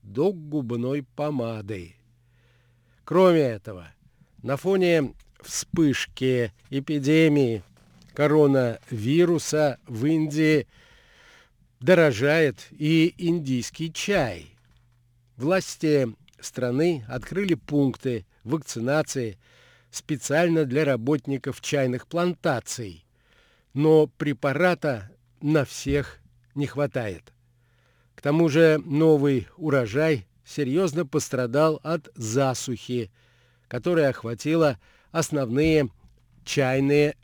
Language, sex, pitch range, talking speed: Russian, male, 120-160 Hz, 75 wpm